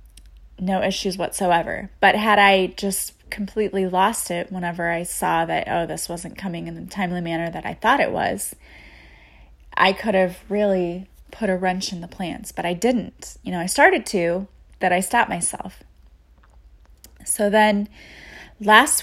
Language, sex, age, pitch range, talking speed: English, female, 20-39, 175-205 Hz, 165 wpm